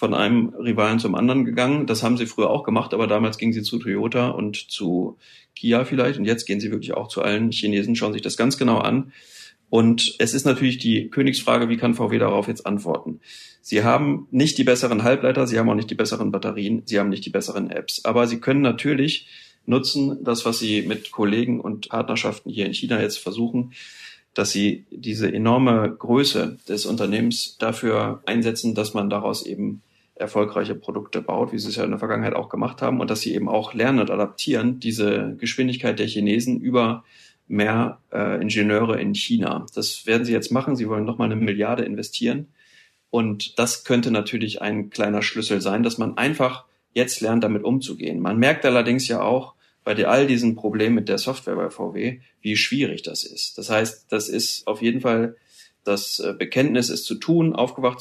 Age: 40-59